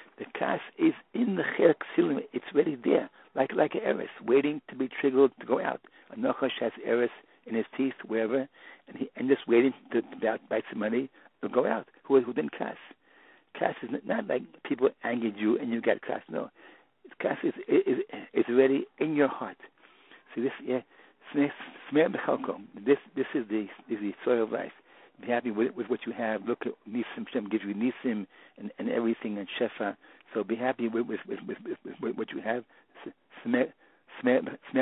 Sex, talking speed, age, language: male, 195 wpm, 60-79, English